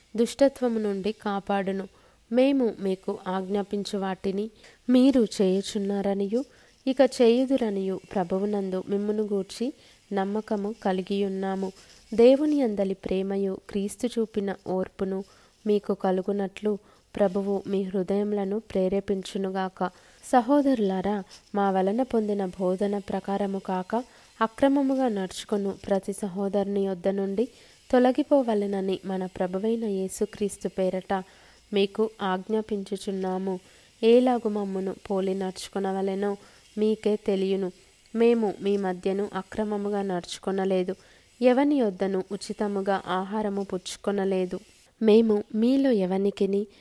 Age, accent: 20-39, native